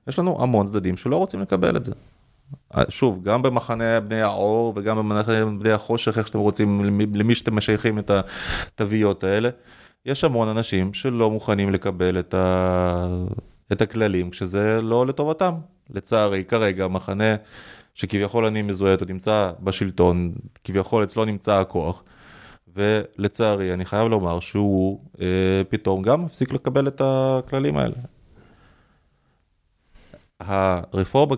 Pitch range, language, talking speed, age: 95-115 Hz, Hebrew, 125 wpm, 20-39